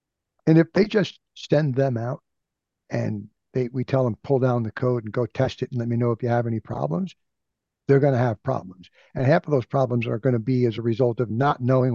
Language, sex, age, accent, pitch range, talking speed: English, male, 60-79, American, 115-135 Hz, 235 wpm